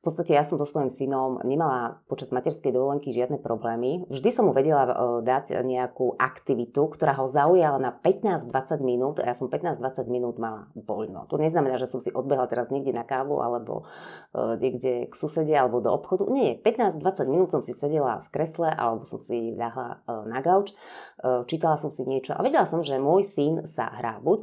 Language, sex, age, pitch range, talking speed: Slovak, female, 30-49, 125-170 Hz, 190 wpm